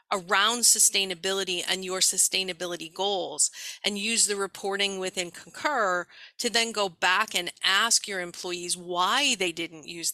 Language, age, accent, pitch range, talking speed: English, 40-59, American, 175-205 Hz, 140 wpm